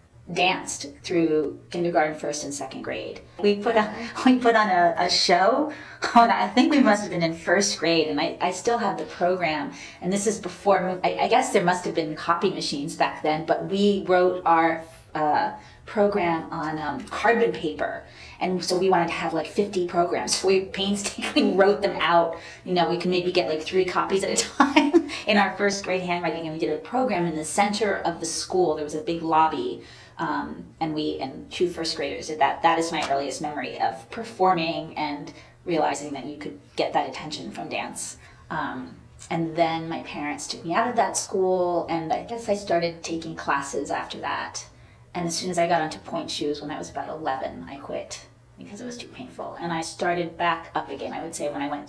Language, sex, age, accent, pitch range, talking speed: English, female, 30-49, American, 160-195 Hz, 215 wpm